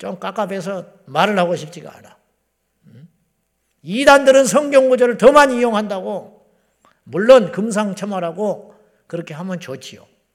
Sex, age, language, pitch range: male, 60-79, Korean, 155-205 Hz